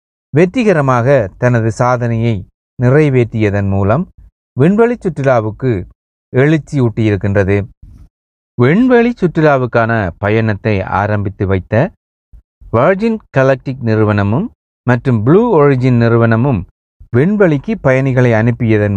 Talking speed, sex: 75 wpm, male